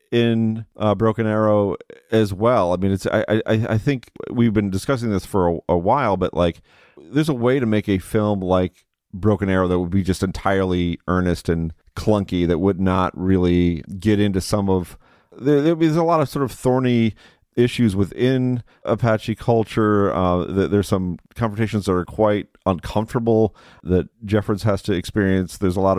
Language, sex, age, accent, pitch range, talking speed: English, male, 40-59, American, 90-110 Hz, 180 wpm